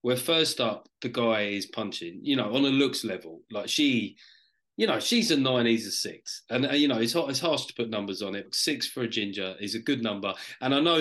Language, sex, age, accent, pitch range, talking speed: English, male, 30-49, British, 120-175 Hz, 245 wpm